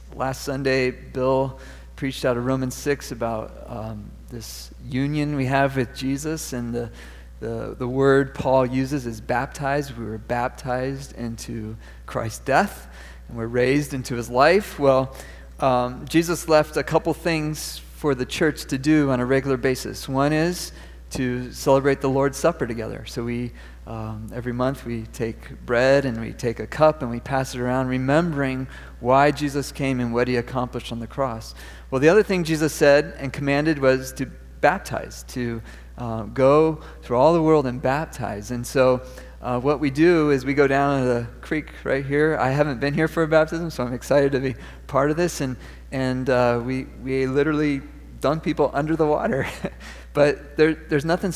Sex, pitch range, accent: male, 115-145 Hz, American